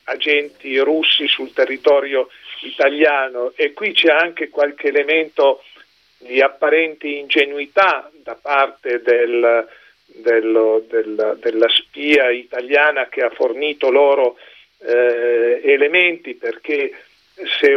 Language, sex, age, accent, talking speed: Italian, male, 40-59, native, 100 wpm